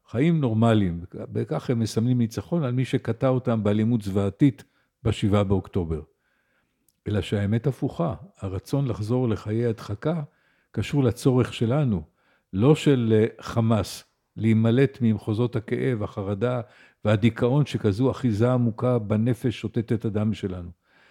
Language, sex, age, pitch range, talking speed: Hebrew, male, 50-69, 110-135 Hz, 115 wpm